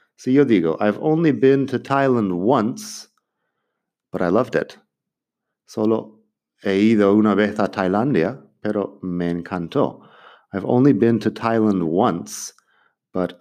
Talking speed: 135 wpm